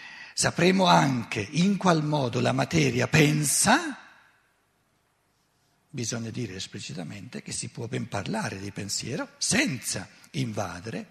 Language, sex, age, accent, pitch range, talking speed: Italian, male, 60-79, native, 110-145 Hz, 110 wpm